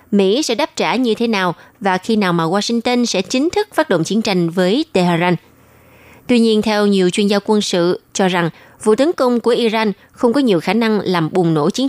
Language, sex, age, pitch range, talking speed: Vietnamese, female, 20-39, 185-235 Hz, 225 wpm